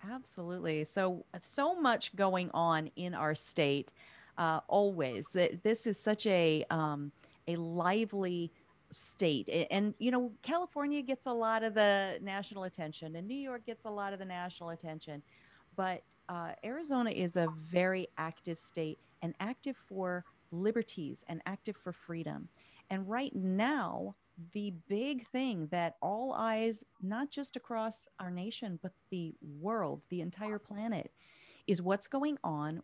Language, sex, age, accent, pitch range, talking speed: English, female, 30-49, American, 165-225 Hz, 145 wpm